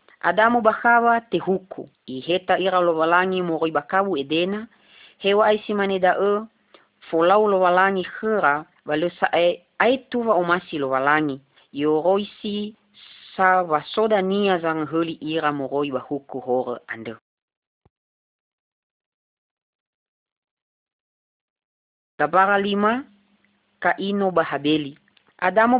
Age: 30-49